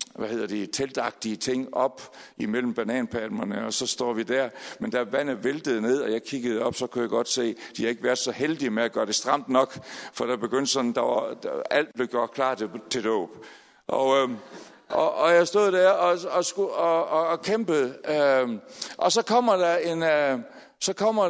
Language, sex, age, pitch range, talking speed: Danish, male, 60-79, 130-175 Hz, 215 wpm